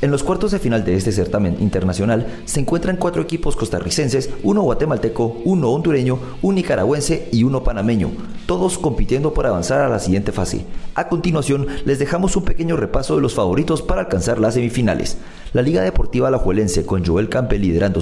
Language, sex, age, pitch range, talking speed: English, male, 40-59, 95-140 Hz, 175 wpm